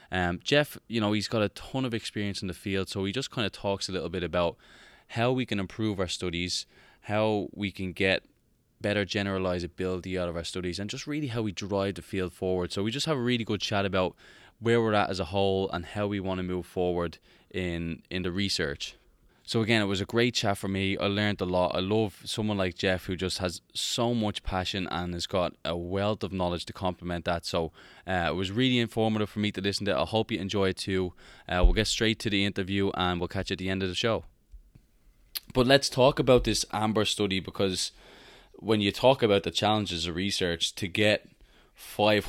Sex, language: male, English